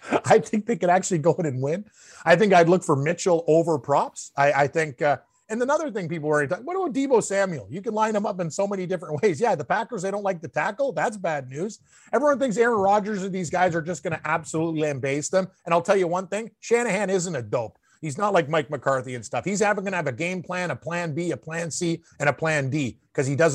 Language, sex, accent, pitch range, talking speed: English, male, American, 150-190 Hz, 260 wpm